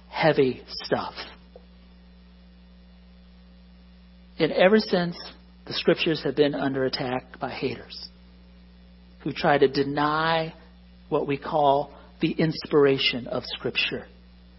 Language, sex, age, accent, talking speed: English, male, 50-69, American, 100 wpm